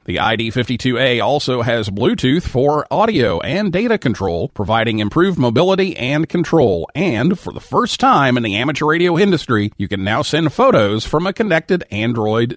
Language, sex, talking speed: English, male, 160 wpm